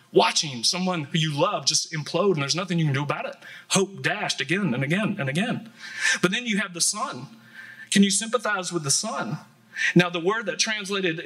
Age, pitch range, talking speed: 30-49, 155-180 Hz, 210 wpm